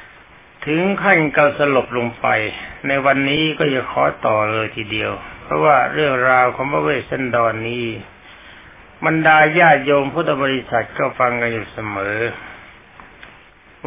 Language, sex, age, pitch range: Thai, male, 60-79, 120-155 Hz